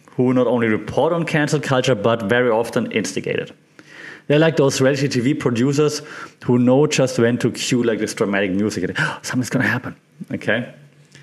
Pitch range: 115-150 Hz